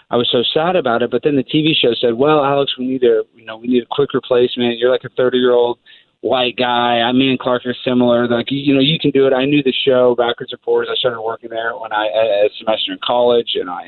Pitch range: 120-140 Hz